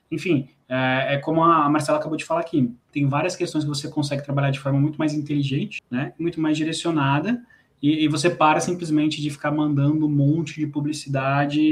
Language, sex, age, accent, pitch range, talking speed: Portuguese, male, 20-39, Brazilian, 145-175 Hz, 185 wpm